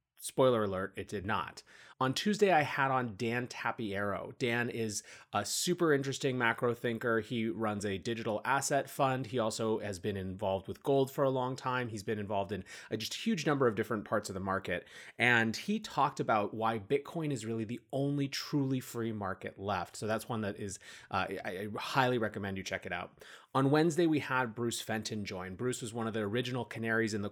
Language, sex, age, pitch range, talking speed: English, male, 30-49, 105-135 Hz, 200 wpm